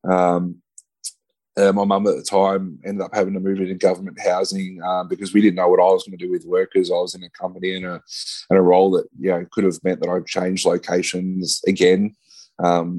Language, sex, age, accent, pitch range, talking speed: English, male, 20-39, Australian, 90-95 Hz, 235 wpm